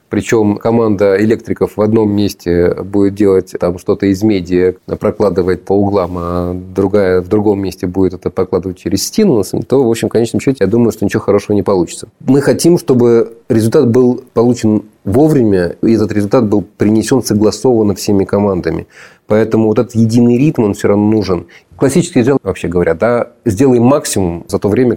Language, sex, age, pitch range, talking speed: Russian, male, 30-49, 95-115 Hz, 170 wpm